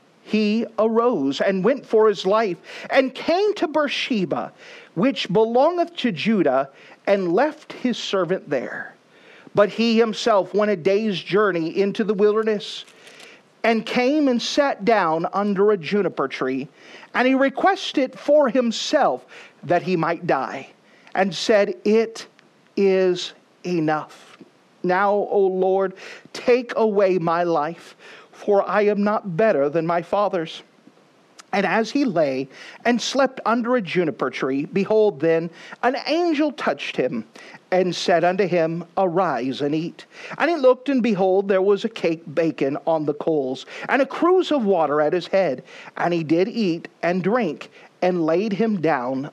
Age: 40-59